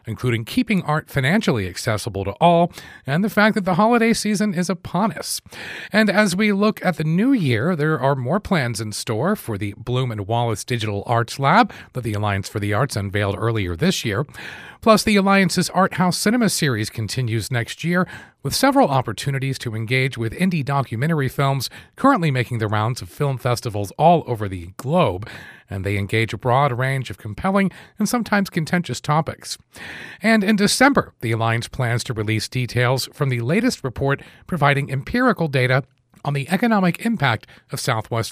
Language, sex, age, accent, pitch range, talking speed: English, male, 40-59, American, 115-185 Hz, 175 wpm